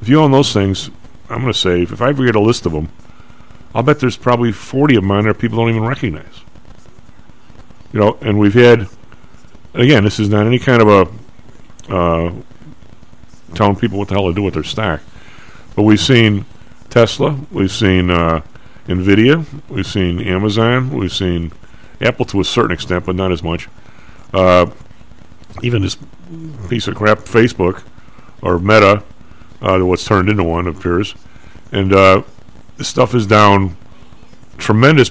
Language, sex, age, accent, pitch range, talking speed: English, male, 50-69, American, 90-115 Hz, 170 wpm